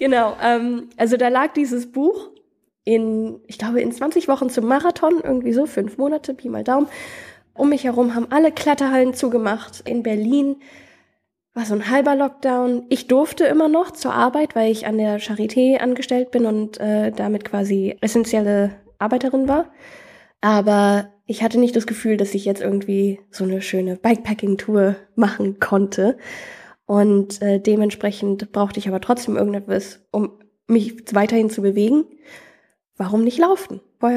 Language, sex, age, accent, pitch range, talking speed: German, female, 10-29, German, 210-265 Hz, 155 wpm